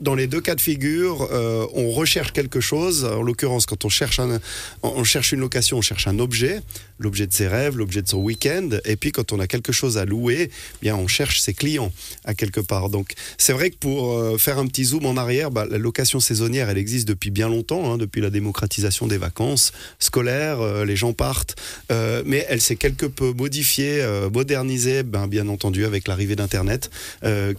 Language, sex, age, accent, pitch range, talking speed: French, male, 30-49, French, 105-135 Hz, 215 wpm